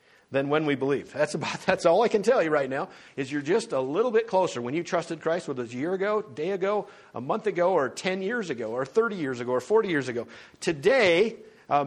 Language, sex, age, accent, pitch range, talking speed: English, male, 50-69, American, 140-205 Hz, 260 wpm